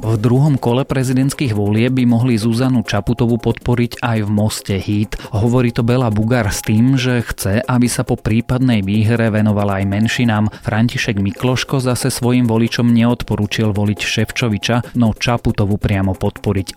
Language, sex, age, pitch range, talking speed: Slovak, male, 30-49, 100-120 Hz, 150 wpm